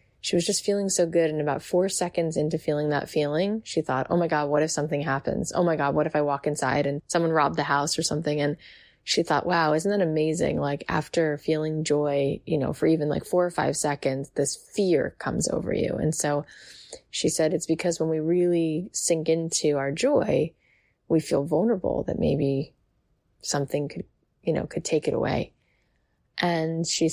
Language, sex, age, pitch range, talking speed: English, female, 20-39, 145-165 Hz, 200 wpm